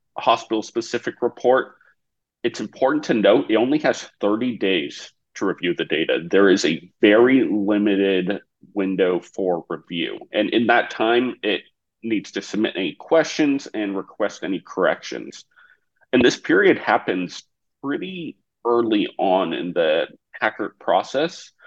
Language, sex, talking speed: English, male, 135 wpm